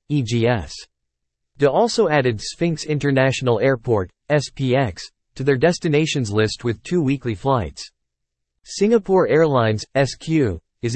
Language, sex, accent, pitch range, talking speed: English, male, American, 115-150 Hz, 110 wpm